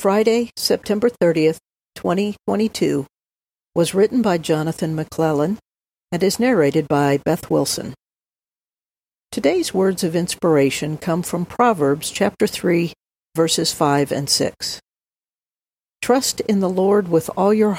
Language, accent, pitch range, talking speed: English, American, 155-205 Hz, 120 wpm